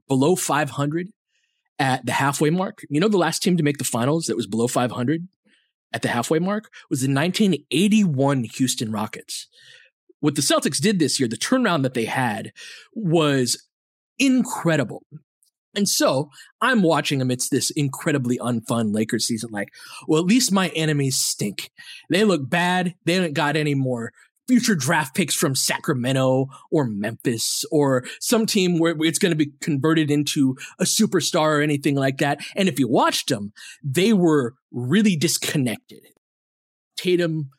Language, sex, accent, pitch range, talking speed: English, male, American, 135-185 Hz, 160 wpm